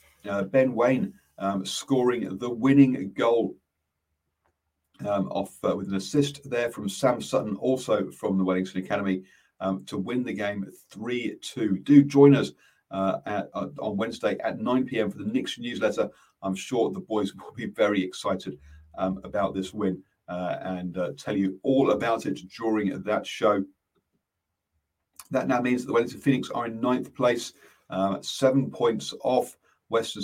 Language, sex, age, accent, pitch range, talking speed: English, male, 40-59, British, 95-110 Hz, 160 wpm